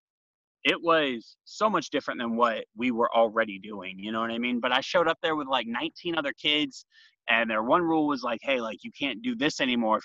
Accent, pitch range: American, 115-165 Hz